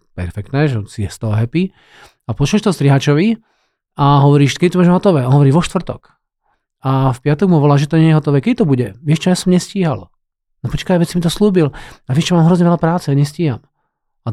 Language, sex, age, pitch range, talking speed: Slovak, male, 40-59, 130-170 Hz, 230 wpm